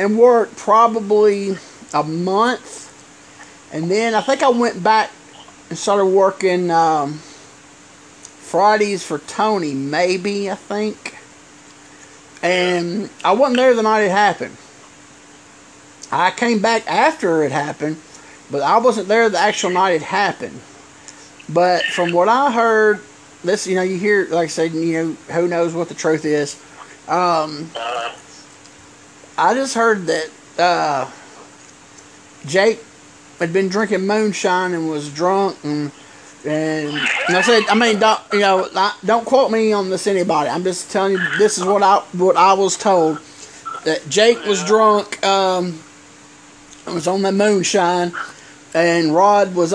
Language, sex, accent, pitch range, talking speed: English, male, American, 160-210 Hz, 145 wpm